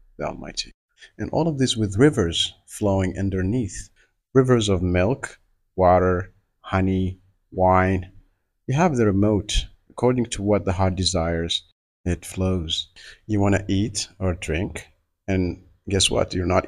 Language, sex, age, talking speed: English, male, 50-69, 140 wpm